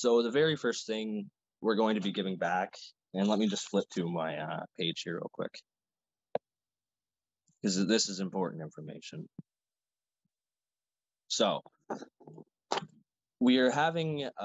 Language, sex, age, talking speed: English, male, 20-39, 135 wpm